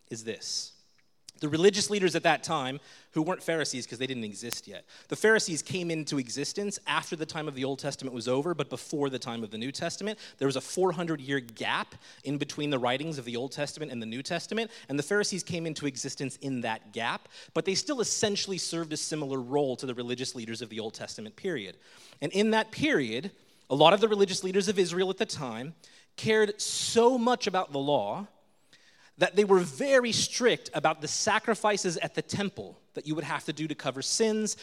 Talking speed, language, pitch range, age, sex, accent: 210 wpm, English, 140-205 Hz, 30-49, male, American